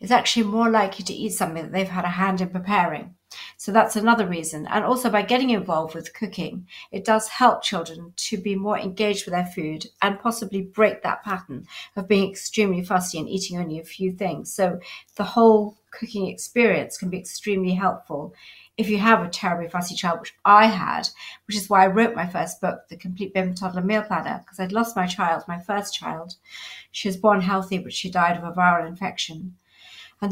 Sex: female